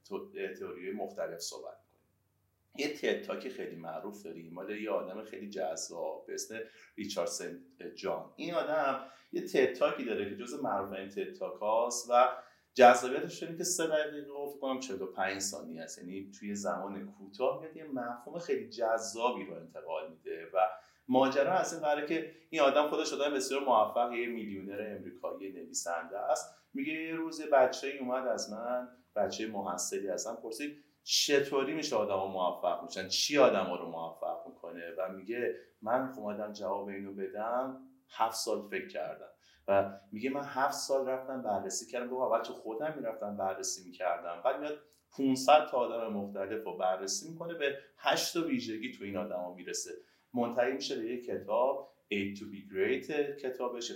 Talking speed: 155 wpm